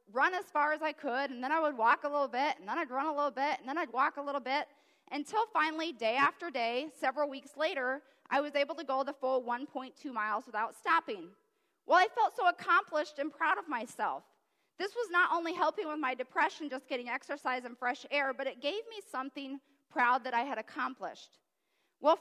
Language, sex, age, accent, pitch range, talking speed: English, female, 30-49, American, 260-320 Hz, 220 wpm